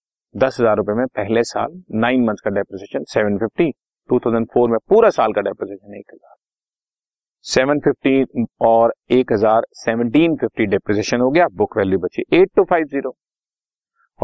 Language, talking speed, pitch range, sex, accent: Hindi, 120 wpm, 100-145 Hz, male, native